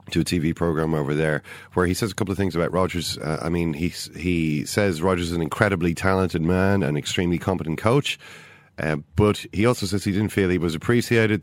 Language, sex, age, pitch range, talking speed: English, male, 40-59, 80-100 Hz, 220 wpm